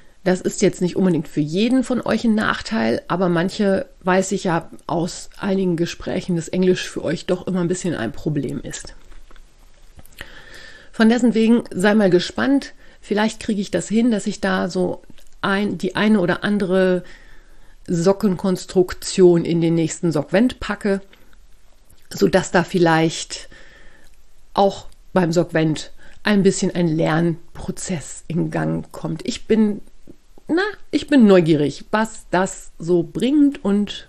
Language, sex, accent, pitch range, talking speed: German, female, German, 175-210 Hz, 140 wpm